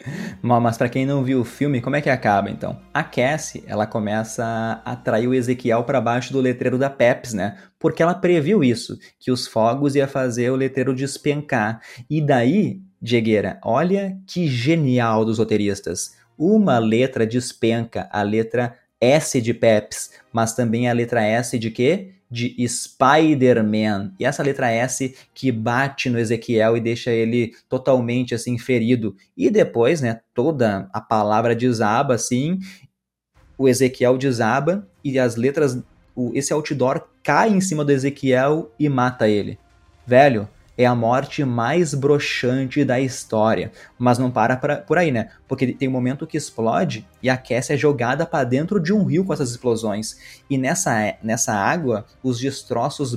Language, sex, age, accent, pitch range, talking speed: Portuguese, male, 20-39, Brazilian, 115-145 Hz, 160 wpm